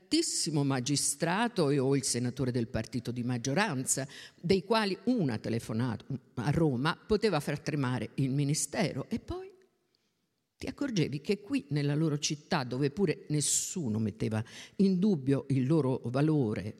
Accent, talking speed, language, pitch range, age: native, 135 wpm, Italian, 140-195 Hz, 50-69